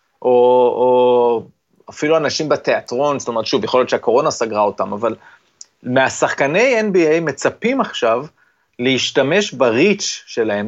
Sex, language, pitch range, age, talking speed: male, Hebrew, 125-195 Hz, 30-49, 125 wpm